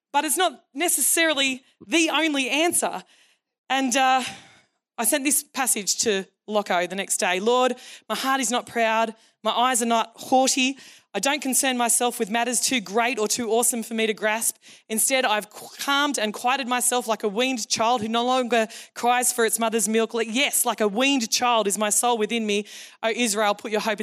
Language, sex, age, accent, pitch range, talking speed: English, female, 20-39, Australian, 210-255 Hz, 190 wpm